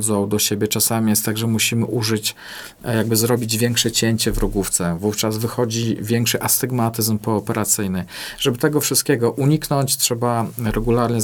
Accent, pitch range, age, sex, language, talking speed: native, 110-125 Hz, 40-59, male, Polish, 135 wpm